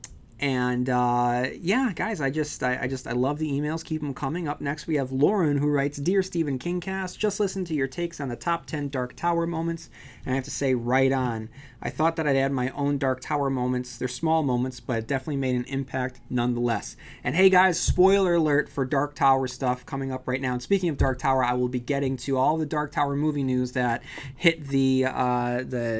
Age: 30-49